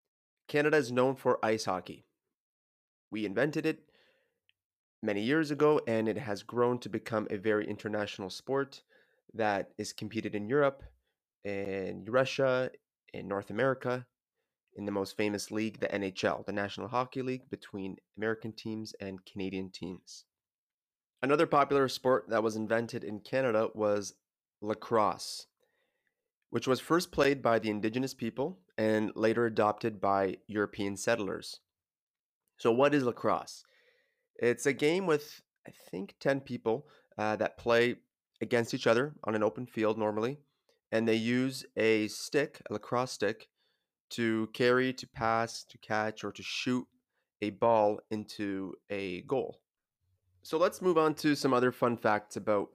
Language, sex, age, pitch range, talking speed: English, male, 30-49, 105-130 Hz, 145 wpm